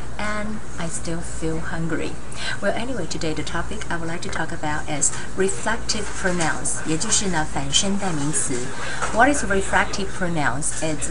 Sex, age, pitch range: female, 30-49, 150-190 Hz